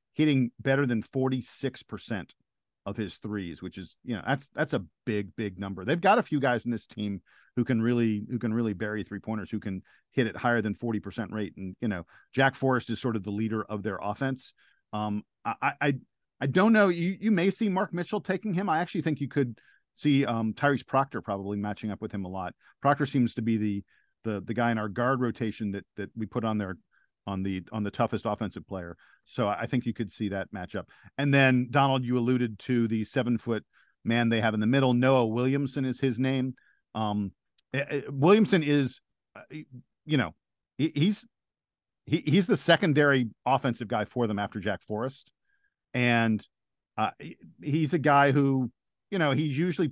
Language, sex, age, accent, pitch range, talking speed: English, male, 40-59, American, 105-140 Hz, 205 wpm